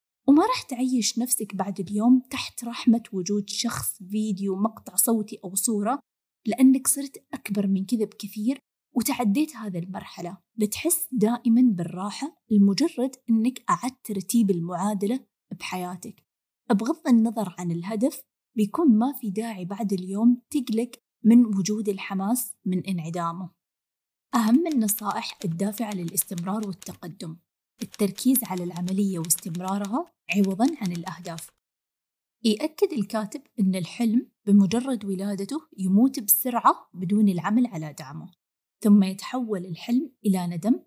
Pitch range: 190-240 Hz